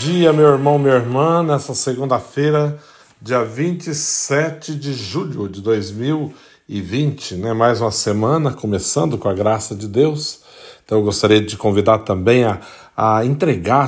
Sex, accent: male, Brazilian